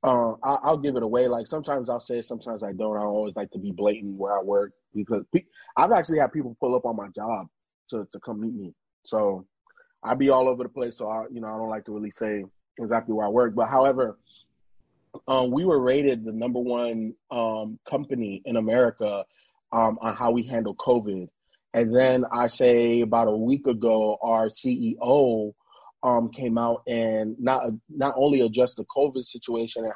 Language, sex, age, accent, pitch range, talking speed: English, male, 20-39, American, 110-130 Hz, 200 wpm